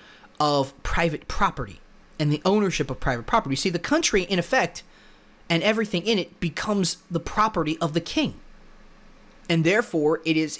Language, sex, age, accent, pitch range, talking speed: English, male, 30-49, American, 150-220 Hz, 160 wpm